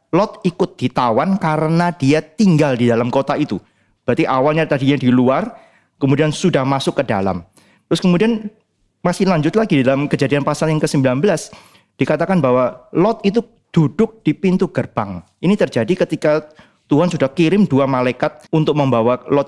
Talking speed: 150 wpm